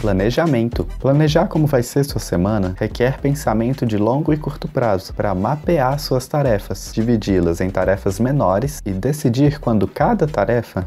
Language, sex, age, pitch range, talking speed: Portuguese, male, 20-39, 105-140 Hz, 150 wpm